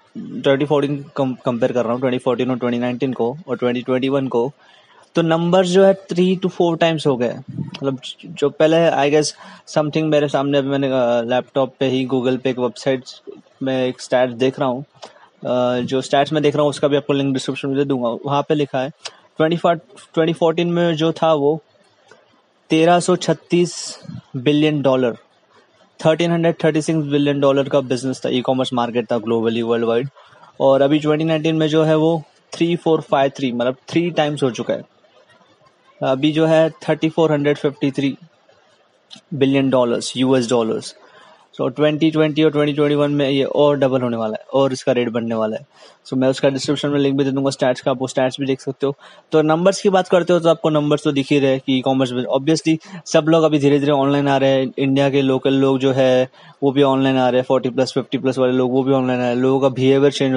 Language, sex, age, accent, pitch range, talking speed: Hindi, male, 20-39, native, 130-155 Hz, 210 wpm